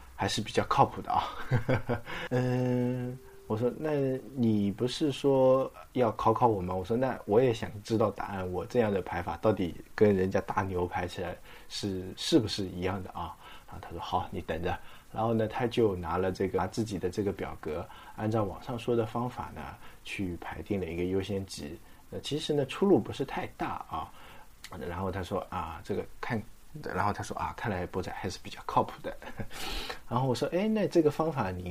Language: Chinese